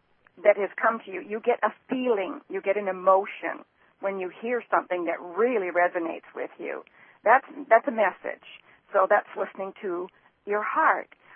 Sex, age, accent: female, 50-69, American